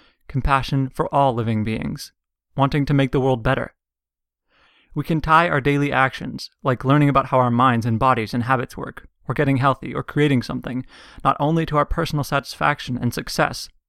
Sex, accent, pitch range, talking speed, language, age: male, American, 120-145 Hz, 180 wpm, English, 20-39